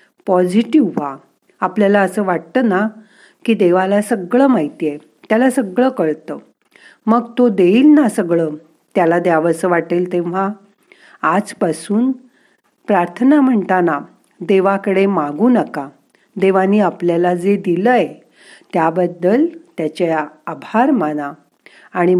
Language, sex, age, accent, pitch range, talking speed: Marathi, female, 50-69, native, 165-225 Hz, 105 wpm